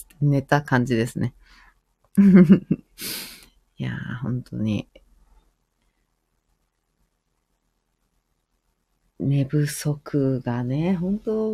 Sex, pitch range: female, 130-185 Hz